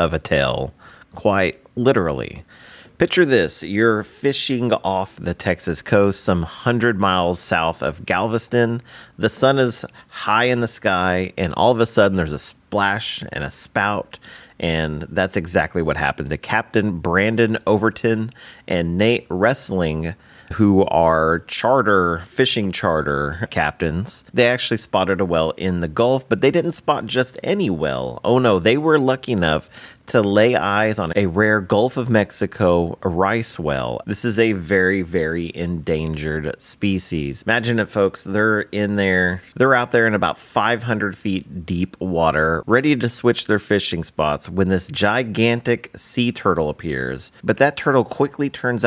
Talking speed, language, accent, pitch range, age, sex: 155 wpm, English, American, 85-115 Hz, 40-59, male